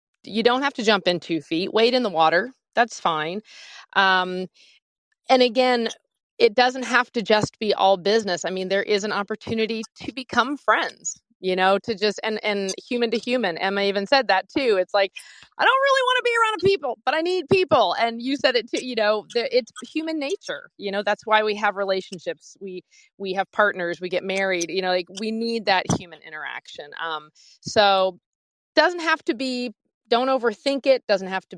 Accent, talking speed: American, 200 wpm